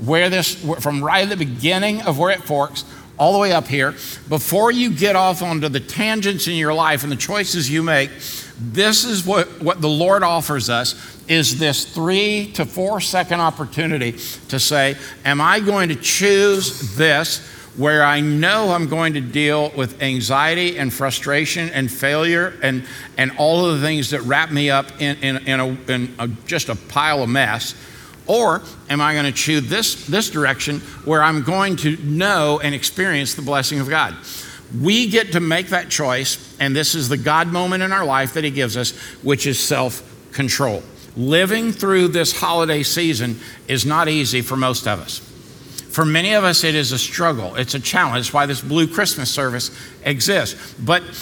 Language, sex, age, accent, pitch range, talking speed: English, male, 60-79, American, 135-175 Hz, 190 wpm